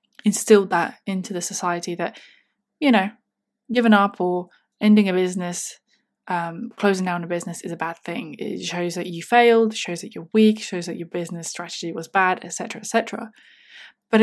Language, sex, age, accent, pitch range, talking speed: English, female, 20-39, British, 185-225 Hz, 175 wpm